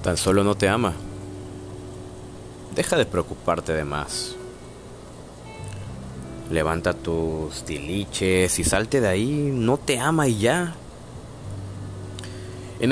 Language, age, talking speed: Spanish, 30-49, 105 wpm